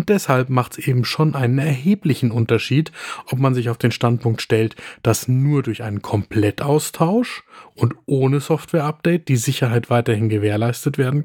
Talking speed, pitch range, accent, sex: 155 wpm, 115-150 Hz, German, male